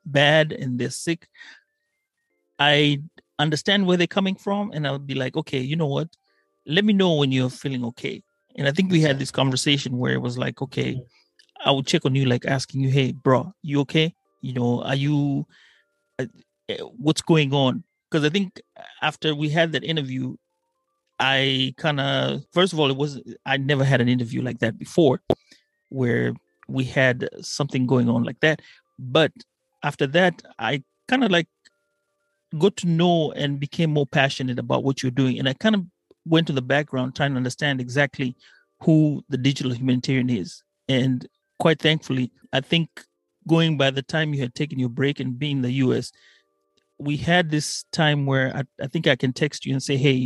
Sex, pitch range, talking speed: male, 130-160 Hz, 190 wpm